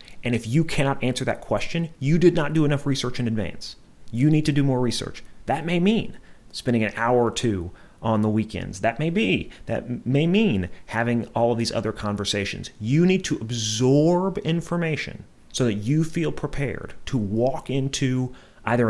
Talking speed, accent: 180 wpm, American